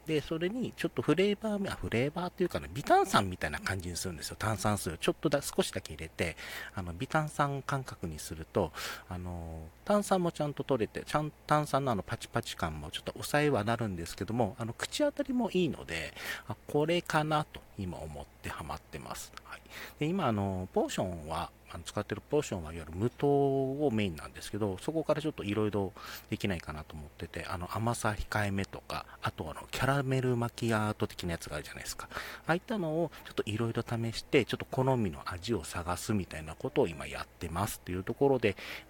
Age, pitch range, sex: 40-59, 90-140 Hz, male